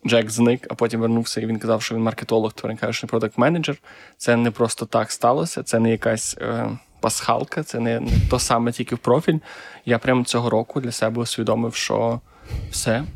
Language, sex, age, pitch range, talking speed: Ukrainian, male, 20-39, 115-125 Hz, 180 wpm